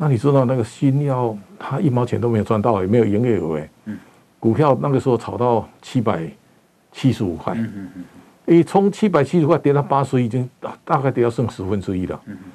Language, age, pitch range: Chinese, 50-69, 110-150 Hz